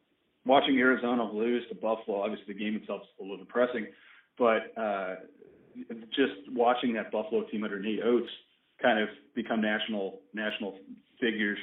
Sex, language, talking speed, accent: male, English, 145 wpm, American